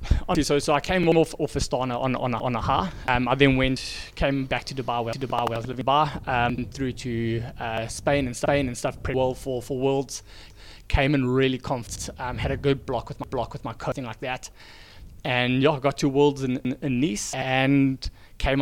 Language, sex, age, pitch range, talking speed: English, male, 20-39, 115-140 Hz, 230 wpm